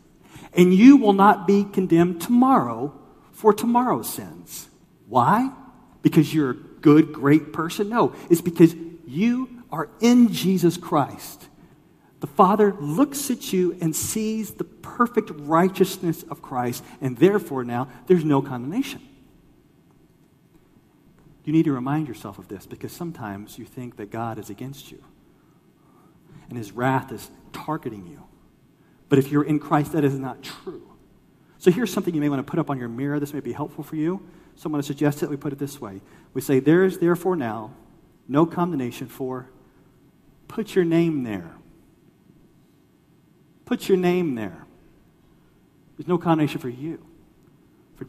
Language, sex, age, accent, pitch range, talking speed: English, male, 40-59, American, 140-185 Hz, 155 wpm